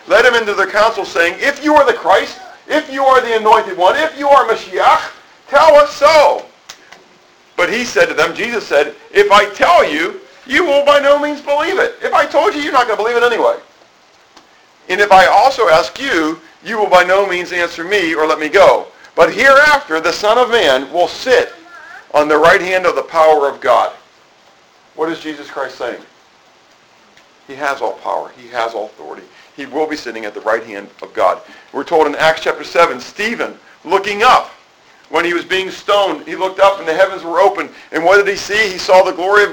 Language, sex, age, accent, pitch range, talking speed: English, male, 50-69, American, 165-230 Hz, 215 wpm